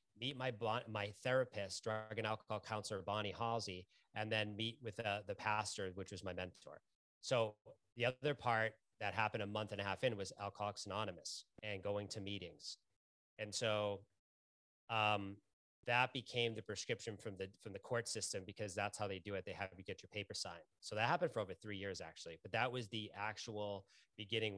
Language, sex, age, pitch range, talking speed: English, male, 30-49, 100-115 Hz, 200 wpm